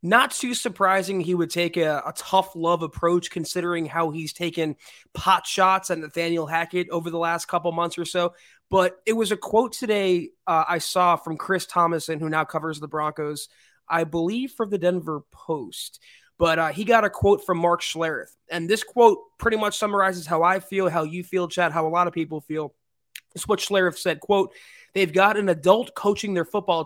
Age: 20-39